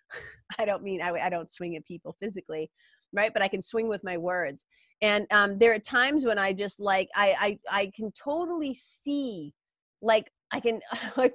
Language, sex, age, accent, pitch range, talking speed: English, female, 30-49, American, 185-270 Hz, 195 wpm